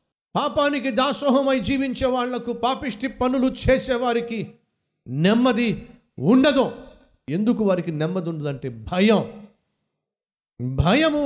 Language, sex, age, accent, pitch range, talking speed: Telugu, male, 50-69, native, 135-215 Hz, 85 wpm